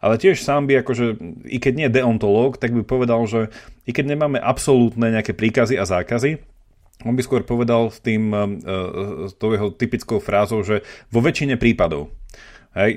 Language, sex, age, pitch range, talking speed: Slovak, male, 30-49, 110-130 Hz, 165 wpm